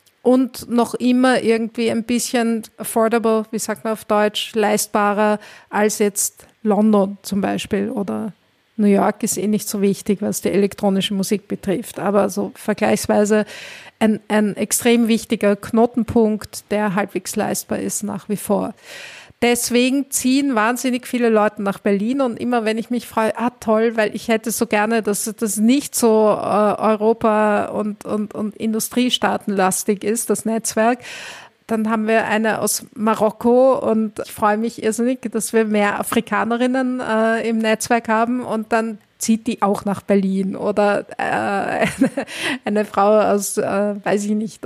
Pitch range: 205-230 Hz